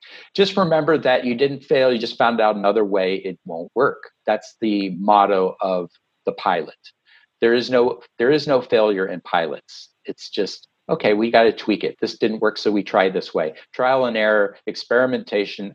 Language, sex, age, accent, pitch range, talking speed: English, male, 40-59, American, 110-150 Hz, 190 wpm